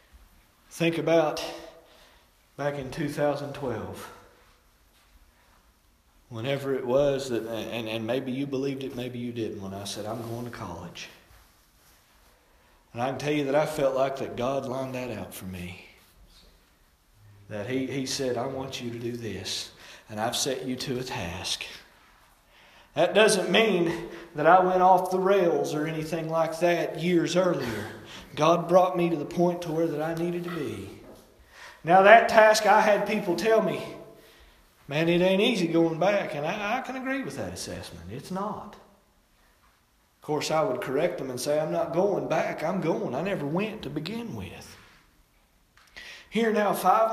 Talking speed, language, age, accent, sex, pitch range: 170 wpm, English, 40-59, American, male, 120-190 Hz